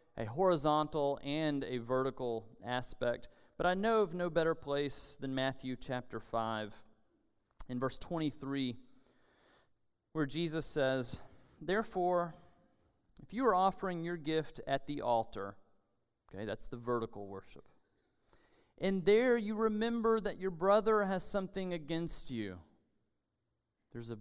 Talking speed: 125 wpm